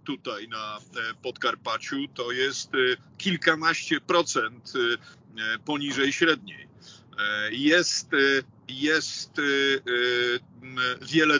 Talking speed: 65 wpm